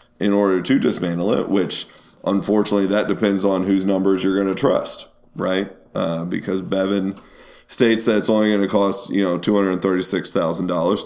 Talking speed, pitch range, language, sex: 165 wpm, 95-110 Hz, English, male